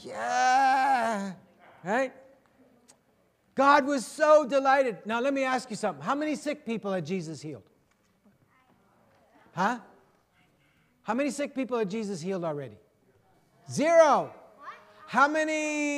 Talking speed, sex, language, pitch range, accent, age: 115 wpm, male, English, 230-305 Hz, American, 60-79